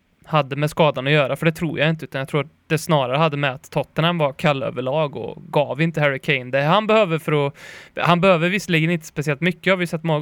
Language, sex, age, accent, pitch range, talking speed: Swedish, male, 20-39, native, 140-175 Hz, 255 wpm